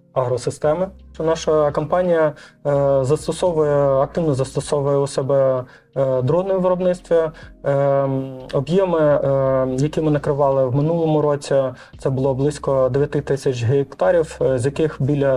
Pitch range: 130-150 Hz